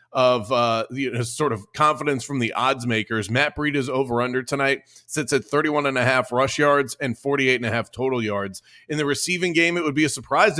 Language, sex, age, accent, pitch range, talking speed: English, male, 30-49, American, 125-145 Hz, 230 wpm